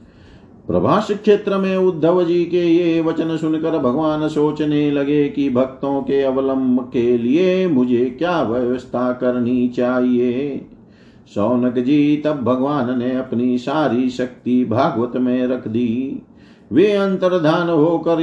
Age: 50-69